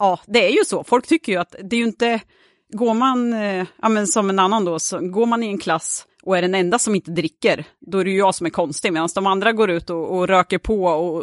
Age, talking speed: 30-49, 285 wpm